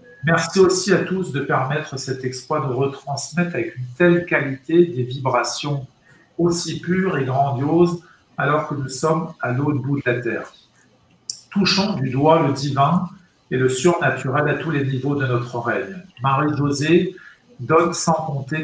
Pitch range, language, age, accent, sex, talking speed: 130-165 Hz, French, 50-69, French, male, 160 wpm